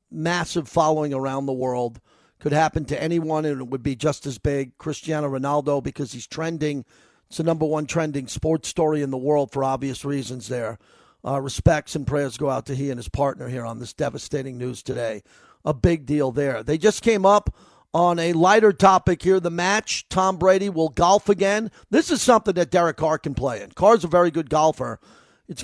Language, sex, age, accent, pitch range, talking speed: English, male, 40-59, American, 145-180 Hz, 205 wpm